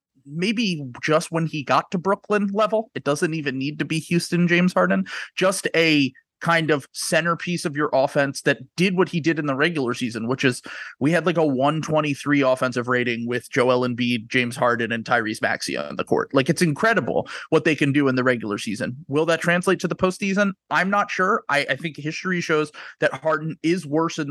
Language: English